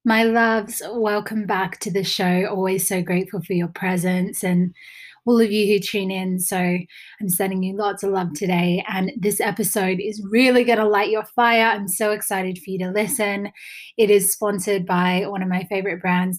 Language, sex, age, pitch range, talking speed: English, female, 20-39, 190-225 Hz, 200 wpm